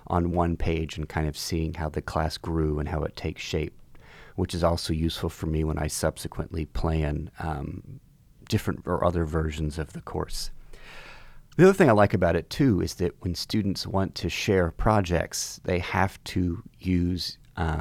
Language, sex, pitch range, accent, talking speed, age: English, male, 80-95 Hz, American, 185 wpm, 30-49